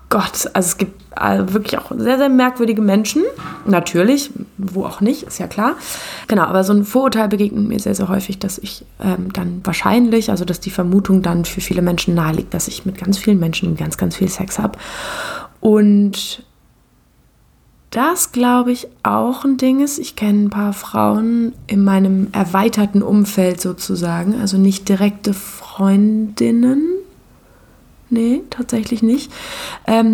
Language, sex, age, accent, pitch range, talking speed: German, female, 20-39, German, 195-235 Hz, 155 wpm